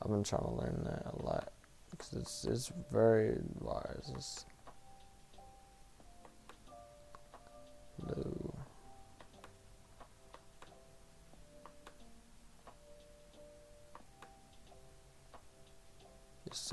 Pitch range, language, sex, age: 100-125 Hz, English, male, 20-39